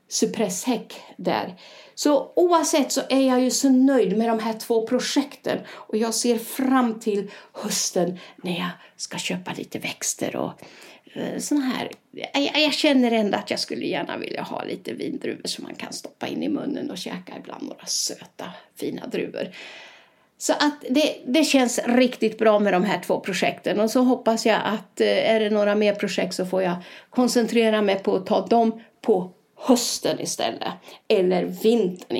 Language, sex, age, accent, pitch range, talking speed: Swedish, female, 50-69, native, 190-250 Hz, 170 wpm